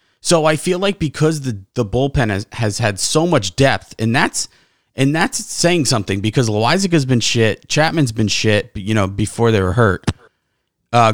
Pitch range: 115-150 Hz